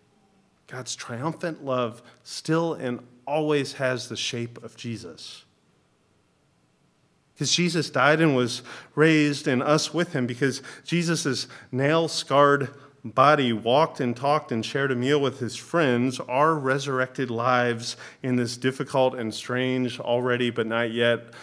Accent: American